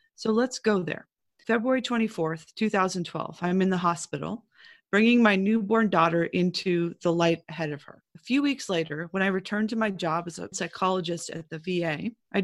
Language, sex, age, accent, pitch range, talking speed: English, female, 30-49, American, 170-215 Hz, 185 wpm